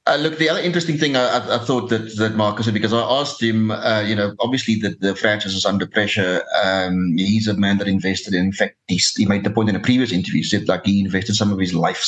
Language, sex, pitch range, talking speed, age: English, male, 95-110 Hz, 270 wpm, 30-49